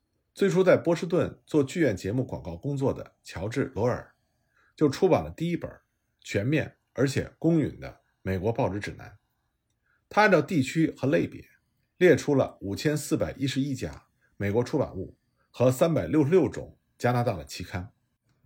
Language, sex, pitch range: Chinese, male, 110-160 Hz